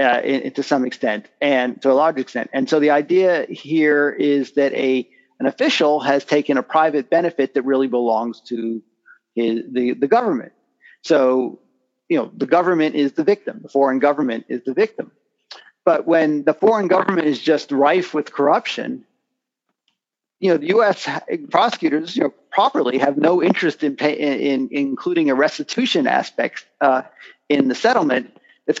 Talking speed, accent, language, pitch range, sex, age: 170 wpm, American, English, 130-155 Hz, male, 40-59